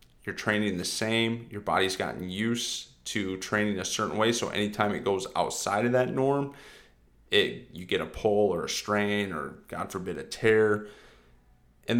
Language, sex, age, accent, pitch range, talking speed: English, male, 30-49, American, 95-115 Hz, 175 wpm